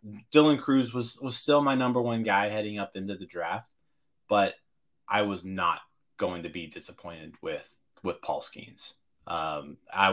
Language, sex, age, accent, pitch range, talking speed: English, male, 20-39, American, 95-125 Hz, 165 wpm